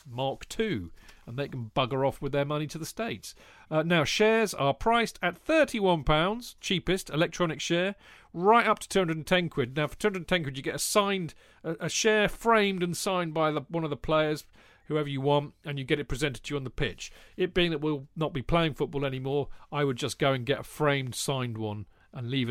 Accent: British